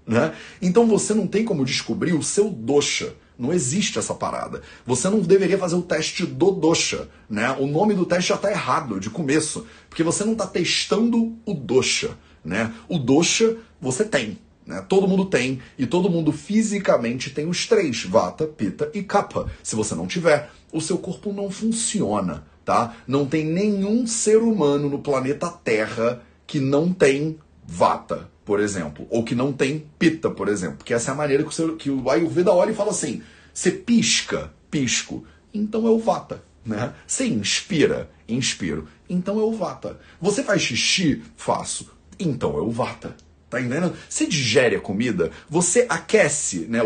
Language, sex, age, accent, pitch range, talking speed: Portuguese, male, 40-59, Brazilian, 140-205 Hz, 175 wpm